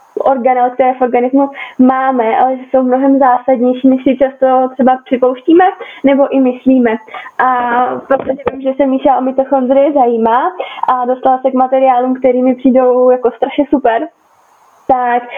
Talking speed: 145 wpm